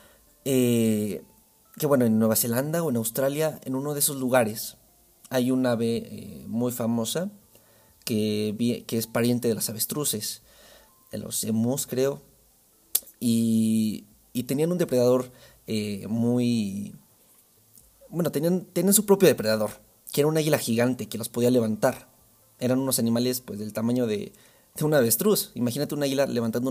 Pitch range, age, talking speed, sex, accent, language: 115-145 Hz, 30-49, 150 wpm, male, Mexican, Spanish